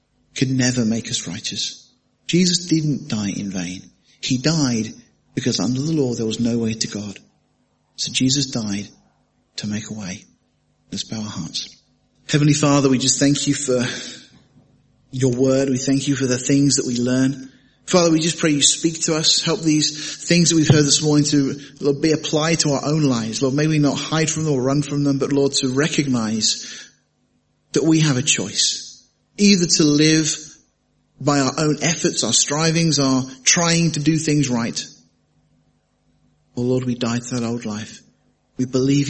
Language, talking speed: English, 180 wpm